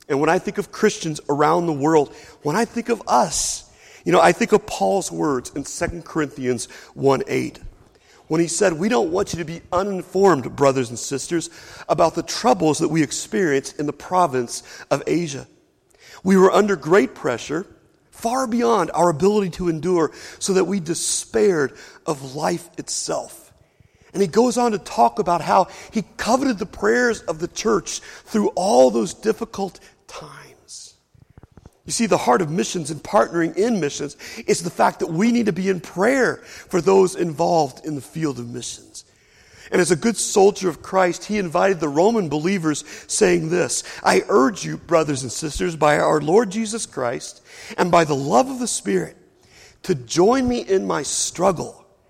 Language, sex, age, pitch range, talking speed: English, male, 40-59, 145-200 Hz, 175 wpm